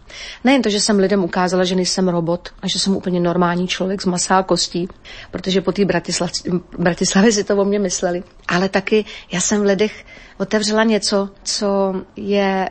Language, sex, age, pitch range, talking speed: Slovak, female, 40-59, 180-205 Hz, 180 wpm